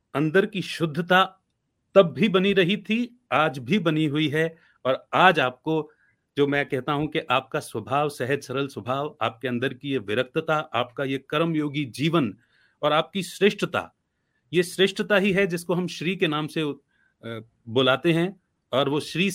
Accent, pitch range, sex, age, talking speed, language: native, 135-185 Hz, male, 40-59, 165 wpm, Hindi